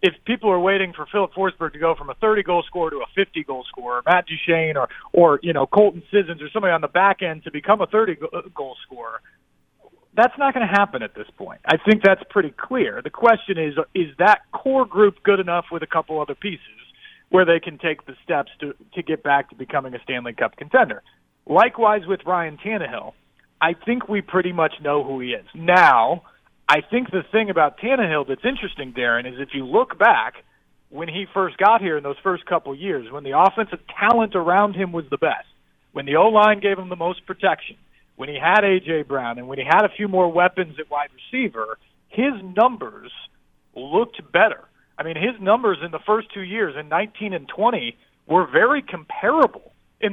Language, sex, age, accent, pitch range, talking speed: English, male, 40-59, American, 150-205 Hz, 205 wpm